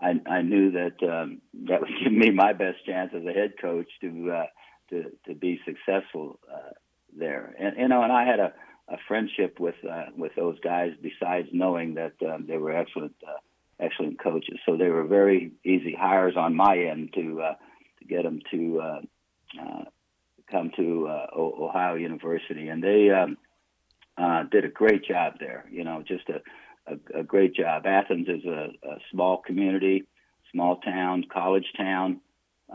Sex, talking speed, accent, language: male, 180 wpm, American, English